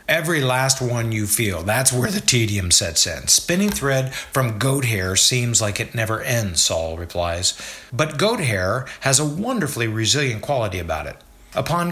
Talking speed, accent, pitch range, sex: 170 wpm, American, 105-165 Hz, male